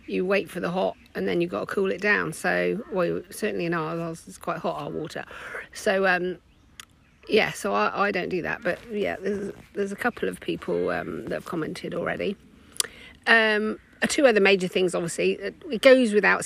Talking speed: 195 wpm